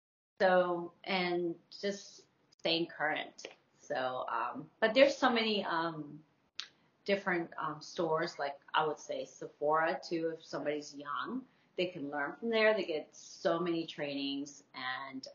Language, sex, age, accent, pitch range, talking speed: English, female, 30-49, American, 145-185 Hz, 135 wpm